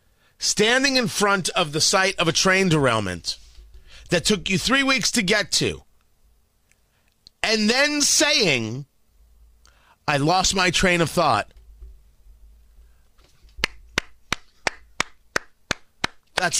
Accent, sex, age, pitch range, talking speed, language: American, male, 30-49, 140-215 Hz, 100 wpm, English